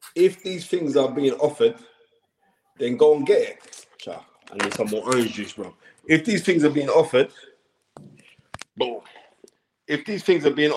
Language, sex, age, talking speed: English, male, 20-39, 165 wpm